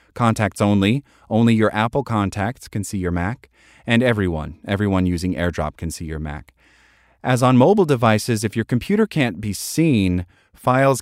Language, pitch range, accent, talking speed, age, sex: English, 90-125 Hz, American, 165 wpm, 30-49, male